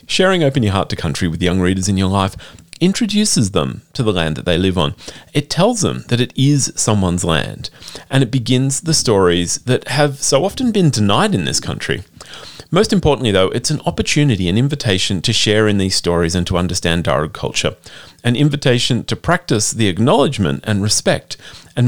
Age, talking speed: 40-59, 190 wpm